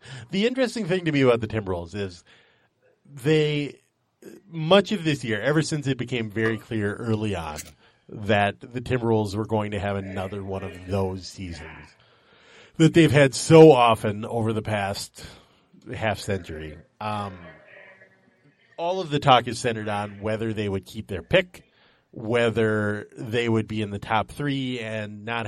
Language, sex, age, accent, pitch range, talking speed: English, male, 30-49, American, 100-130 Hz, 160 wpm